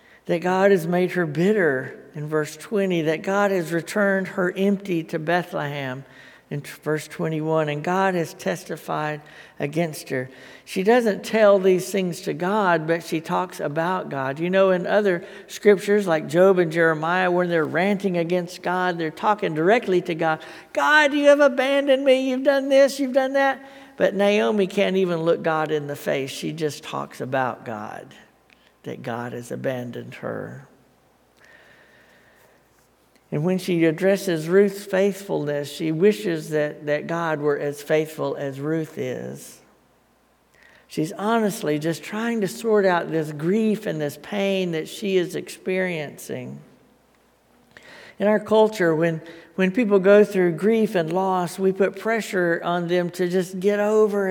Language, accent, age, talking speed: English, American, 60-79, 155 wpm